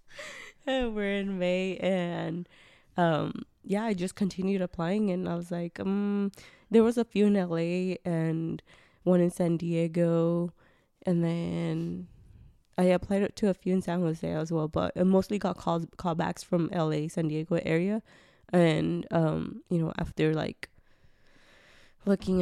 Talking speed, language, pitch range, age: 150 wpm, English, 165-190 Hz, 20-39